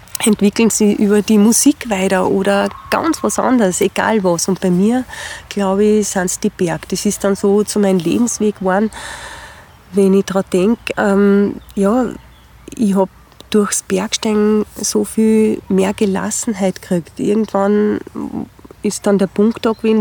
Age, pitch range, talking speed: 30-49, 190-220 Hz, 155 wpm